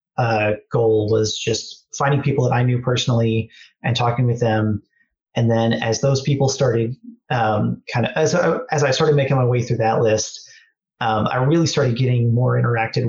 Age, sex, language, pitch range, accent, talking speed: 30-49, male, English, 115-135 Hz, American, 185 wpm